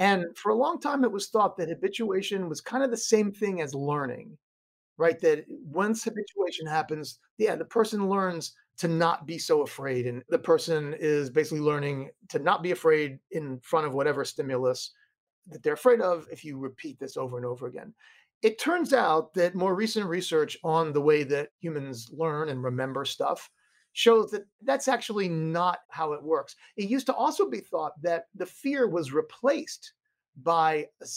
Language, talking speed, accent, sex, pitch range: English, 185 wpm, American, male, 145-220 Hz